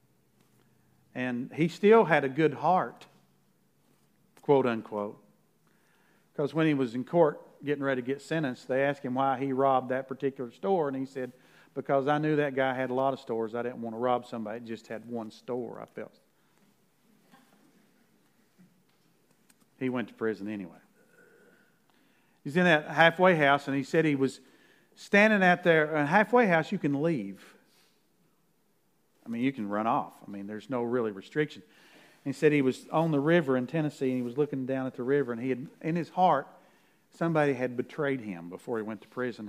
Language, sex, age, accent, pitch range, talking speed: English, male, 50-69, American, 120-145 Hz, 185 wpm